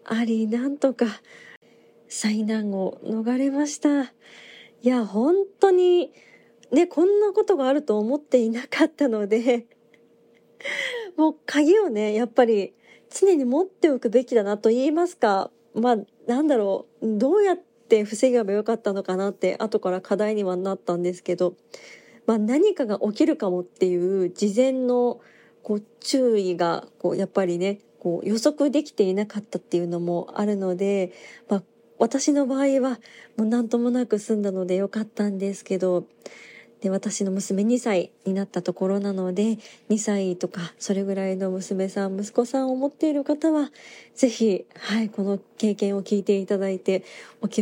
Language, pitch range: Japanese, 195-270 Hz